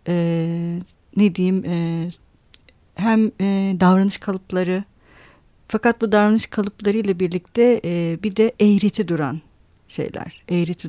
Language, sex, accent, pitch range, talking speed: Turkish, female, native, 170-220 Hz, 110 wpm